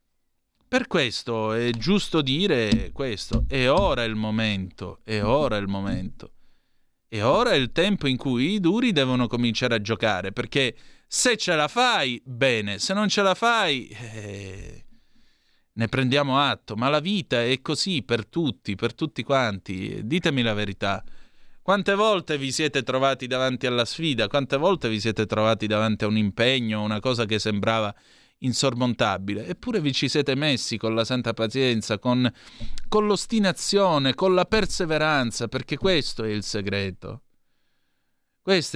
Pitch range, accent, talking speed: 110-155 Hz, native, 155 wpm